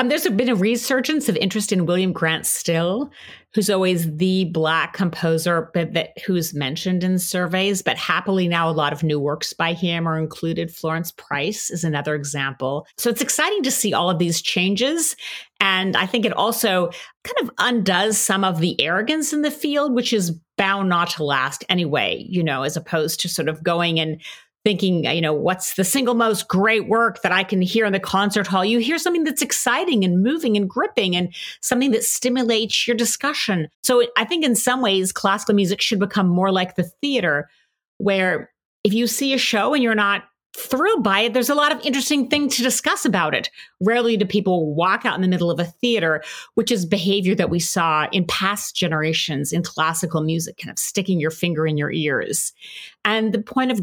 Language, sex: English, female